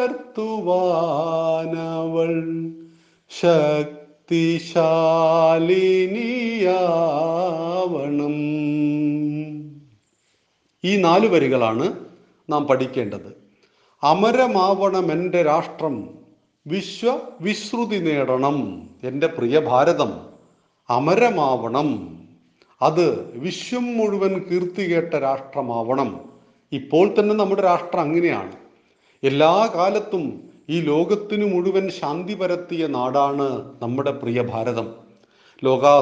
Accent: native